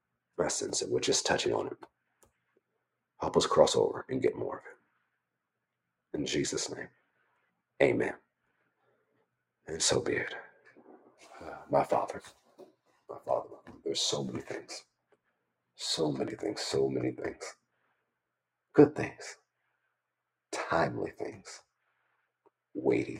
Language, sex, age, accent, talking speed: English, male, 50-69, American, 110 wpm